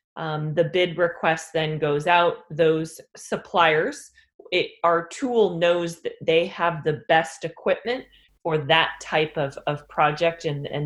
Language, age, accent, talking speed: English, 20-39, American, 145 wpm